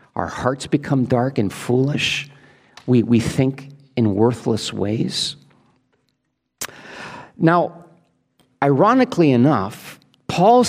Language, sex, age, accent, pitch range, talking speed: English, male, 50-69, American, 125-170 Hz, 90 wpm